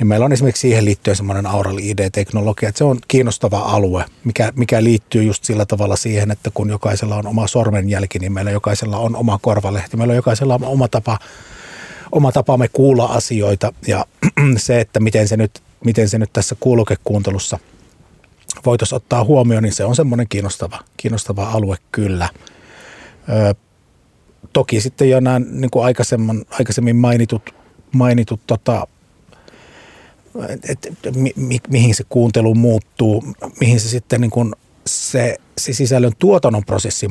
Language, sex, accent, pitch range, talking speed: Finnish, male, native, 105-120 Hz, 150 wpm